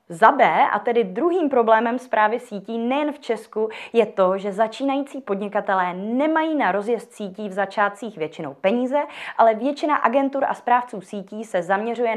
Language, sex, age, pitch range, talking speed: Czech, female, 20-39, 195-260 Hz, 160 wpm